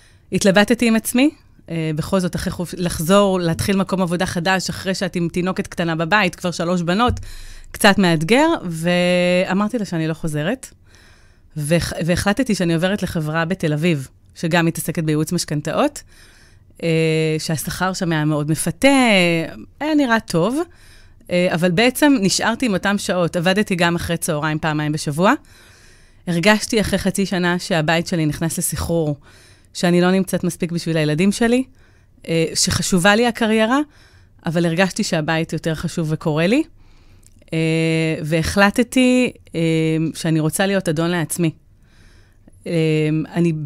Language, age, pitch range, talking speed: Hebrew, 30-49, 160-190 Hz, 130 wpm